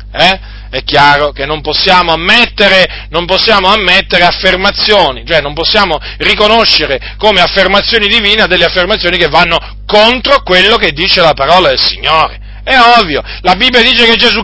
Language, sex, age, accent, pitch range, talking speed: Italian, male, 40-59, native, 165-240 Hz, 150 wpm